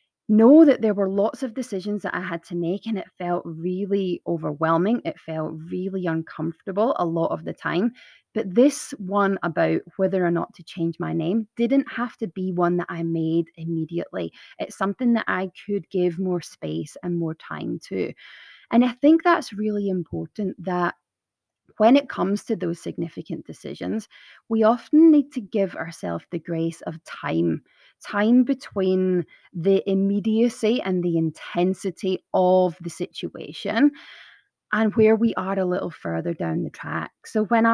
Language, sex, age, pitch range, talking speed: English, female, 20-39, 170-220 Hz, 165 wpm